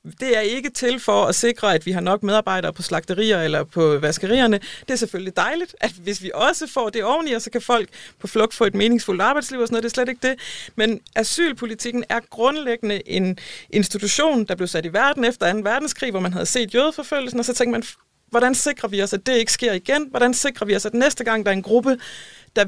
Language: Danish